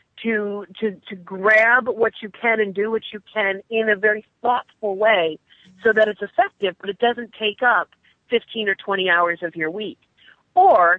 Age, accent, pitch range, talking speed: 40-59, American, 190-235 Hz, 185 wpm